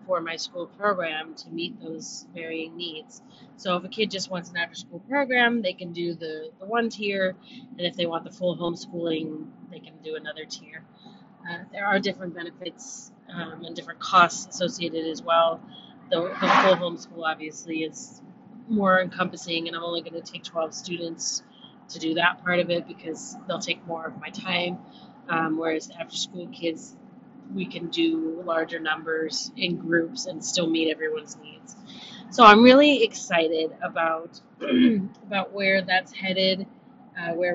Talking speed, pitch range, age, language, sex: 170 wpm, 170-225 Hz, 30-49, English, female